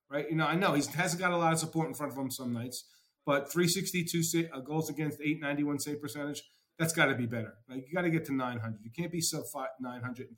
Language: English